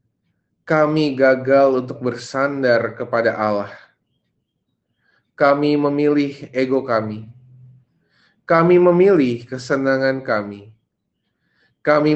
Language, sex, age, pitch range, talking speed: Indonesian, male, 30-49, 115-135 Hz, 75 wpm